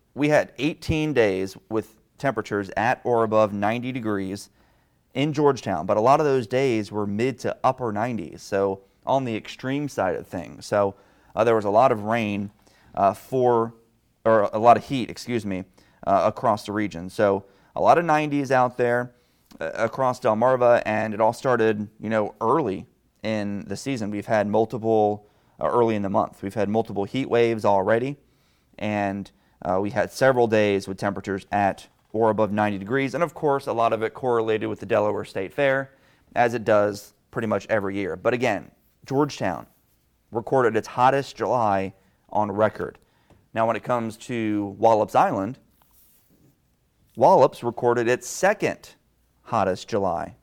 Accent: American